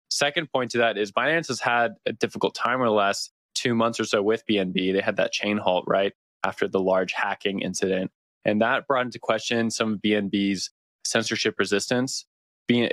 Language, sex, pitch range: English, male, 100-120 Hz